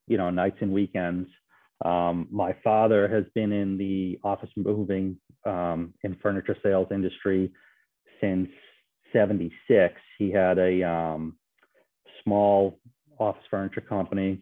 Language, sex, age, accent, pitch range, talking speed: English, male, 30-49, American, 90-105 Hz, 120 wpm